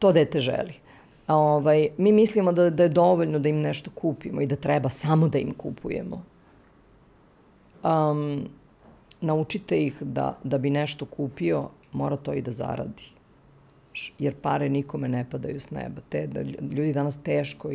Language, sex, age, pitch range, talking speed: Croatian, female, 40-59, 140-175 Hz, 140 wpm